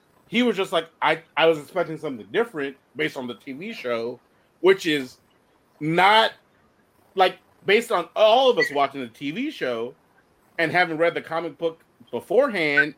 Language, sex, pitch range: English, male, 140-210 Hz